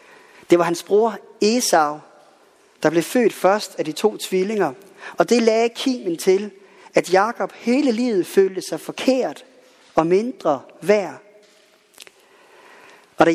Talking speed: 135 wpm